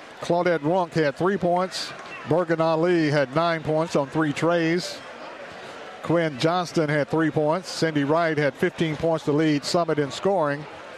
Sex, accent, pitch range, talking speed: male, American, 150-175 Hz, 155 wpm